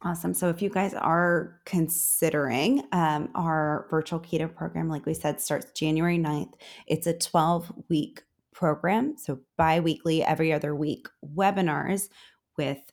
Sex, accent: female, American